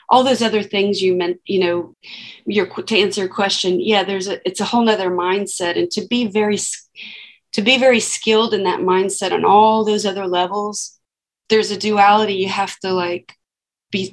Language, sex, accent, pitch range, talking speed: English, female, American, 180-205 Hz, 190 wpm